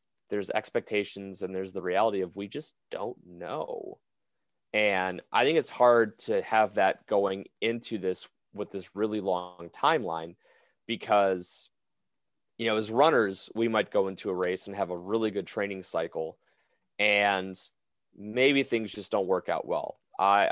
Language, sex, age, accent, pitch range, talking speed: English, male, 30-49, American, 95-115 Hz, 160 wpm